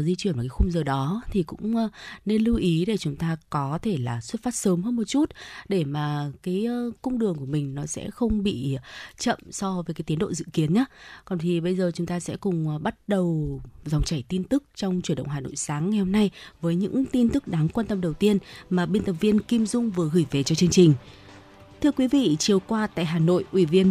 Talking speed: 245 wpm